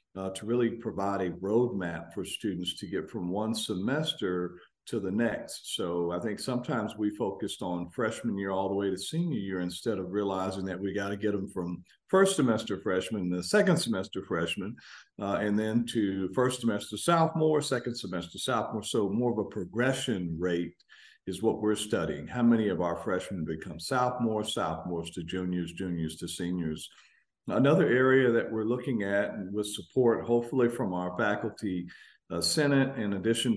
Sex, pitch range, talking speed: male, 95-120 Hz, 175 wpm